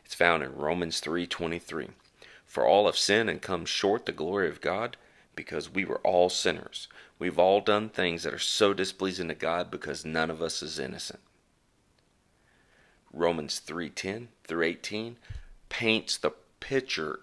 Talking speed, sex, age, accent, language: 155 wpm, male, 40-59, American, English